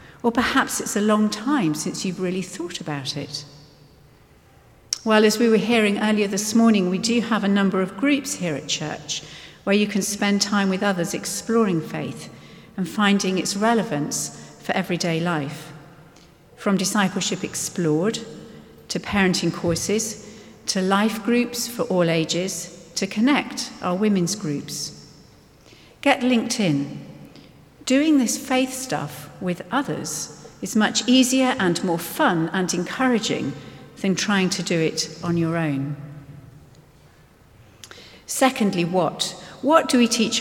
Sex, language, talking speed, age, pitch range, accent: female, English, 140 wpm, 50-69, 165-230 Hz, British